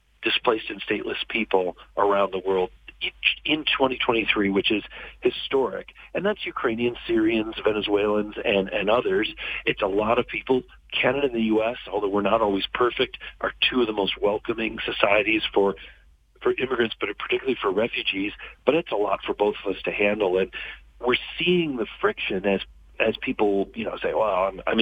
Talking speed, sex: 175 wpm, male